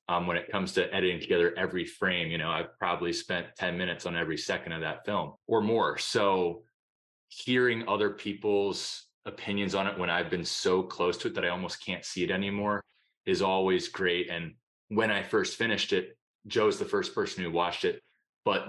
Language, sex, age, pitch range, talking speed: English, male, 20-39, 85-100 Hz, 200 wpm